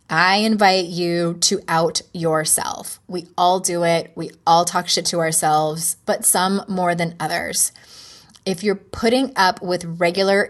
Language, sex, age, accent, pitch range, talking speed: English, female, 20-39, American, 160-190 Hz, 155 wpm